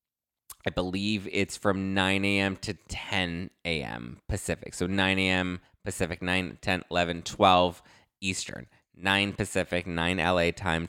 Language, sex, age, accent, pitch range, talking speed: English, male, 20-39, American, 85-105 Hz, 130 wpm